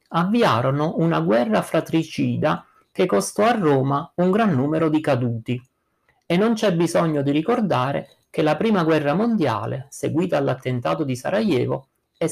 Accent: native